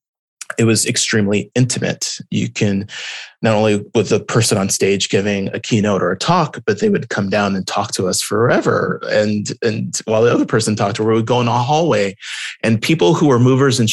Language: English